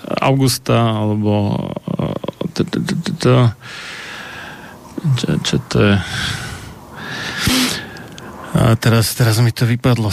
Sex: male